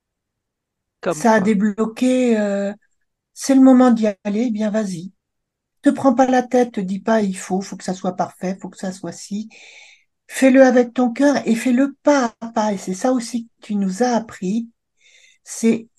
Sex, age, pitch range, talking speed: male, 50-69, 170-240 Hz, 190 wpm